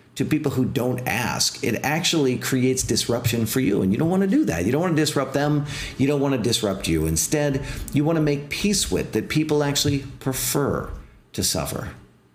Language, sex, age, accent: English, male, 40-59, American